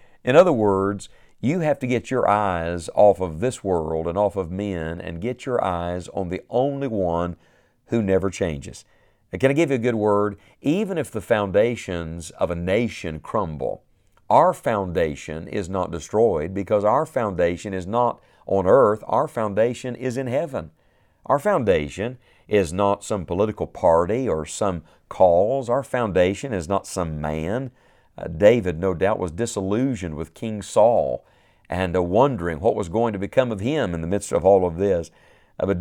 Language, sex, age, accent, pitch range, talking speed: English, male, 50-69, American, 85-115 Hz, 175 wpm